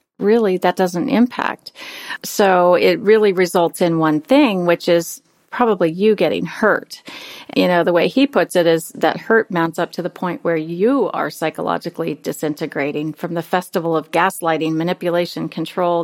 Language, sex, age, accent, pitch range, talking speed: English, female, 40-59, American, 170-215 Hz, 165 wpm